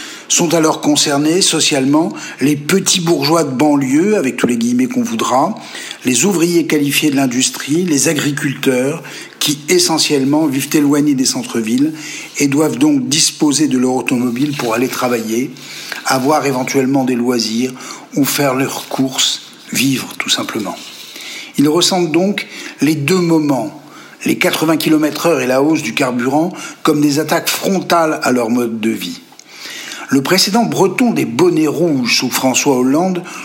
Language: French